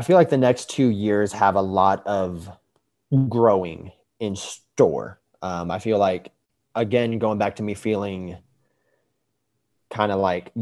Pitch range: 95-110 Hz